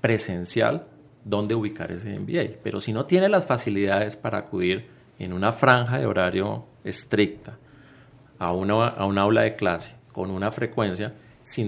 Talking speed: 155 wpm